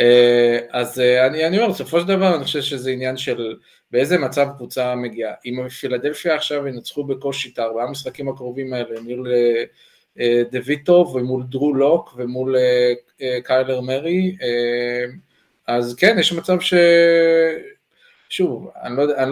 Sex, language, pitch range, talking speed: male, Hebrew, 125-165 Hz, 145 wpm